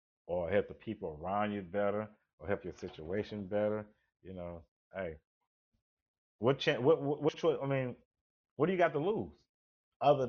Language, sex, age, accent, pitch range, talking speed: English, male, 30-49, American, 105-160 Hz, 175 wpm